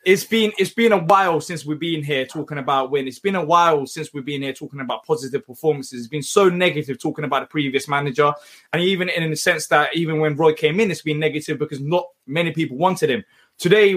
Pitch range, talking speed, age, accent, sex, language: 160-225 Hz, 235 wpm, 20-39, British, male, English